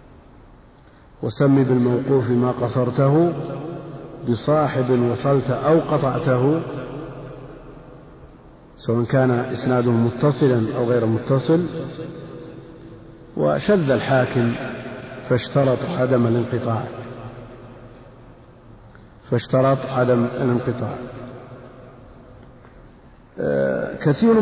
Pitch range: 120-135 Hz